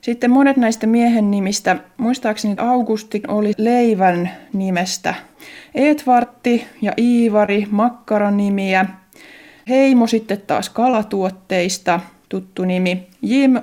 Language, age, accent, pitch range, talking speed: Finnish, 20-39, native, 190-240 Hz, 95 wpm